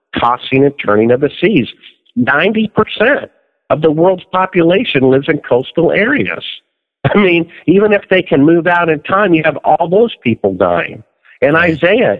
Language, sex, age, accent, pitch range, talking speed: English, male, 50-69, American, 125-170 Hz, 165 wpm